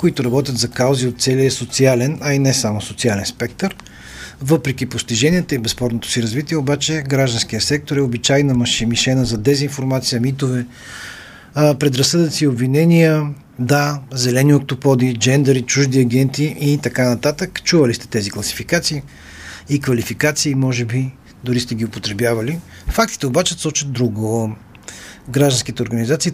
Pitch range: 120-140 Hz